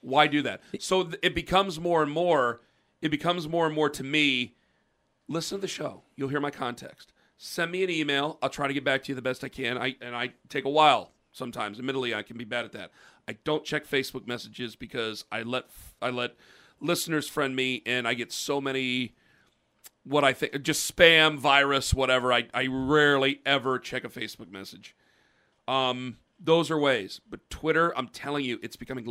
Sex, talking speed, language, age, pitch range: male, 200 wpm, English, 40-59, 125-150 Hz